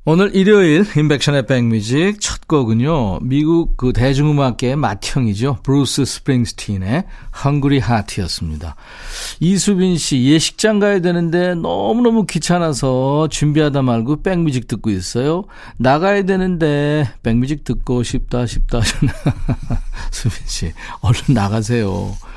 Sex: male